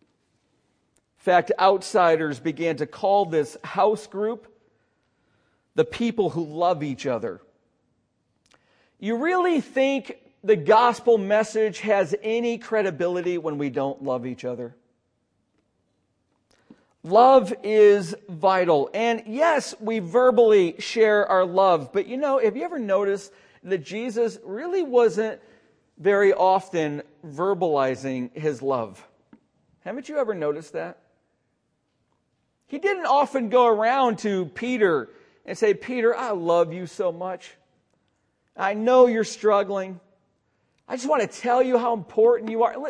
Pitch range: 175-245 Hz